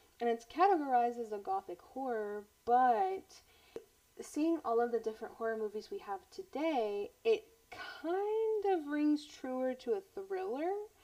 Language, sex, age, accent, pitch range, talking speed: English, female, 20-39, American, 245-375 Hz, 140 wpm